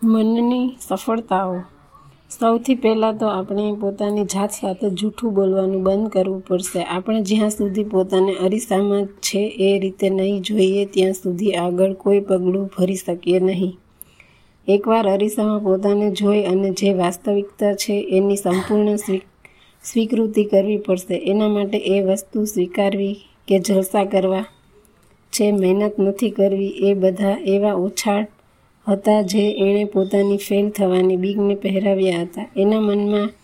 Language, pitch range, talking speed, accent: Gujarati, 190-210 Hz, 125 wpm, native